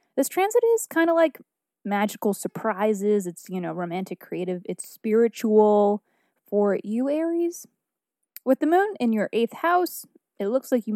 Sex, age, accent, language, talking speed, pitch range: female, 20-39, American, English, 160 wpm, 190-240 Hz